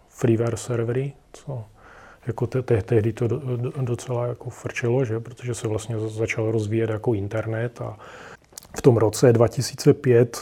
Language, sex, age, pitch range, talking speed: Czech, male, 30-49, 115-135 Hz, 130 wpm